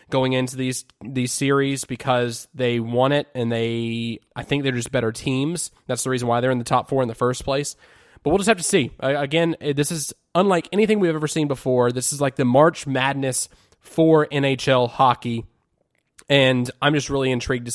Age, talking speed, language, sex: 20-39, 205 wpm, English, male